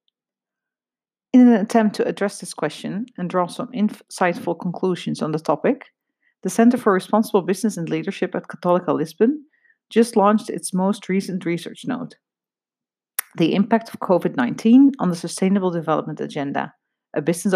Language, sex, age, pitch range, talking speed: English, female, 40-59, 175-215 Hz, 145 wpm